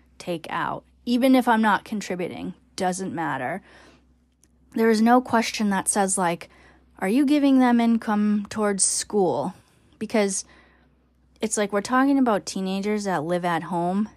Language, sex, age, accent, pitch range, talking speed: English, female, 10-29, American, 185-235 Hz, 145 wpm